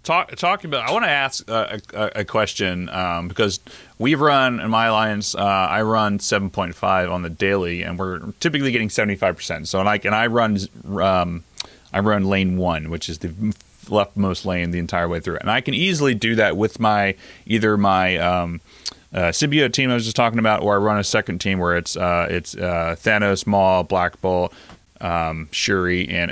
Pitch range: 85-105 Hz